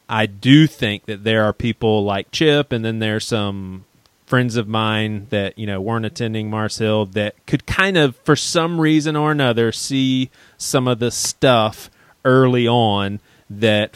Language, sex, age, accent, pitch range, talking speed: English, male, 30-49, American, 105-125 Hz, 170 wpm